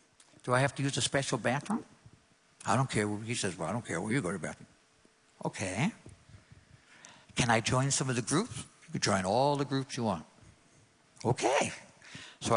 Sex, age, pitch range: male, 60-79, 115-145 Hz